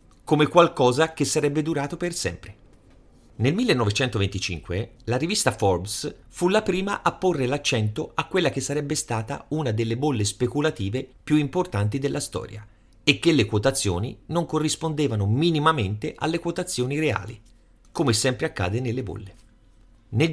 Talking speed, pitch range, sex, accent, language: 140 wpm, 110-165 Hz, male, native, Italian